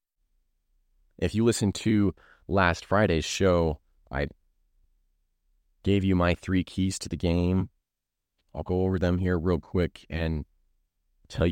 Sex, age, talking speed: male, 30-49, 130 wpm